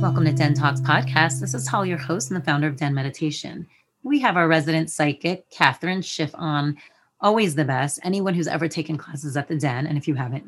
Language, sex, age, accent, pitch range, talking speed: English, female, 30-49, American, 145-175 Hz, 220 wpm